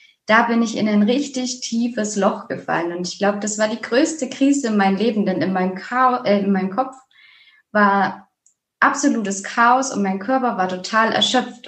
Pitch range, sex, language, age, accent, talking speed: 200-245 Hz, female, German, 20-39, German, 180 wpm